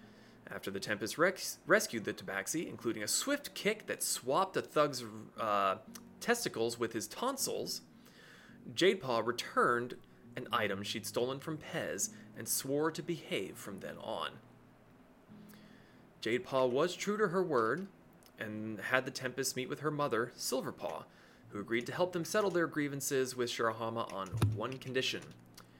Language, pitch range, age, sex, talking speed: English, 110-150 Hz, 20-39, male, 145 wpm